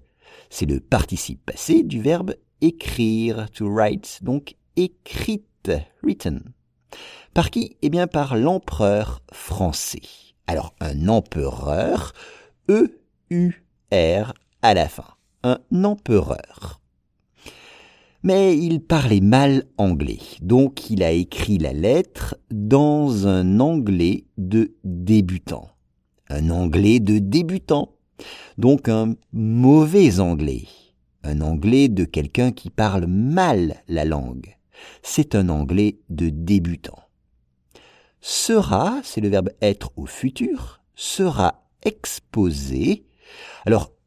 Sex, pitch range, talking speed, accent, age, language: male, 85-145 Hz, 105 wpm, French, 50-69, English